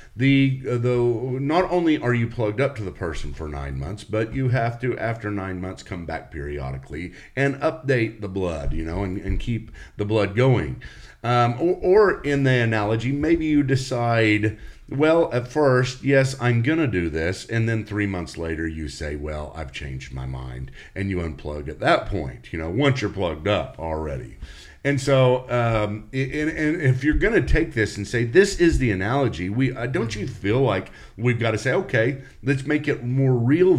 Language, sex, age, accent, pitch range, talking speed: English, male, 50-69, American, 90-135 Hz, 200 wpm